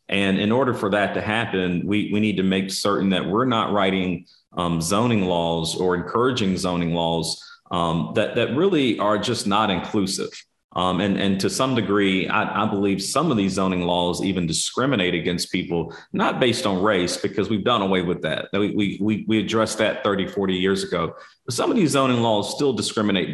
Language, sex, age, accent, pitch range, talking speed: English, male, 40-59, American, 90-105 Hz, 200 wpm